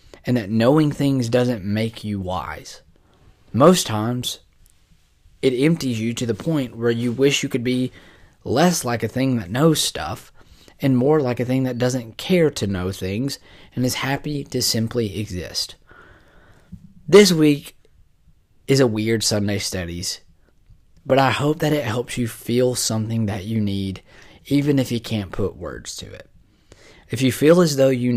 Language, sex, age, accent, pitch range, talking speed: English, male, 20-39, American, 105-135 Hz, 170 wpm